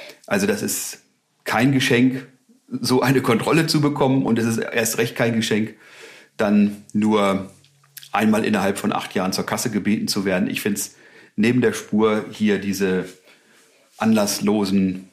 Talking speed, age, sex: 150 wpm, 40-59, male